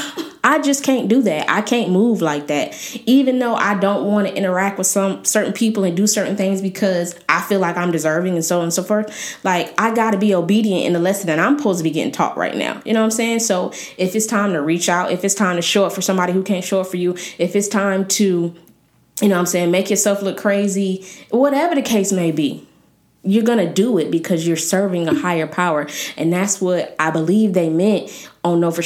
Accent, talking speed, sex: American, 250 wpm, female